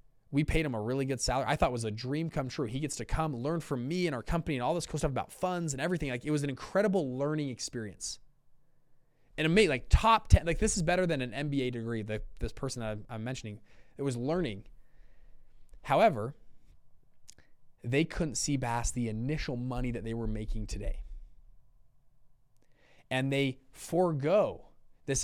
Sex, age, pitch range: male, 20-39, 120-150 Hz